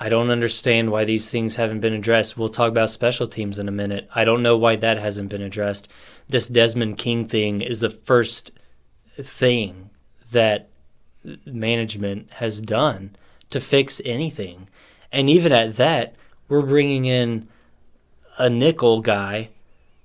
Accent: American